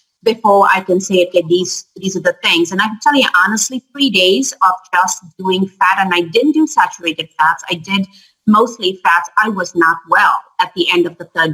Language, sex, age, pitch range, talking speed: English, female, 30-49, 175-220 Hz, 220 wpm